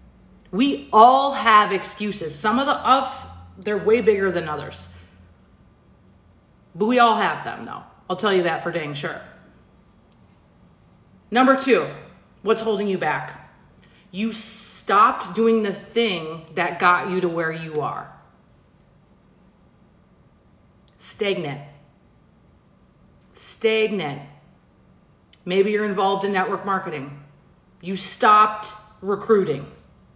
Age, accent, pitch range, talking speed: 30-49, American, 175-215 Hz, 110 wpm